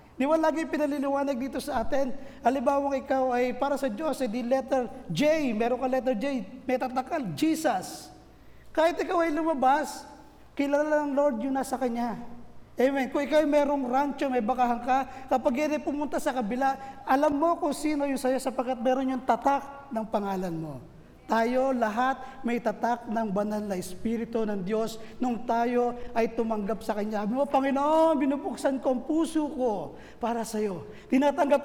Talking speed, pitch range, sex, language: 165 wpm, 225-280 Hz, male, Filipino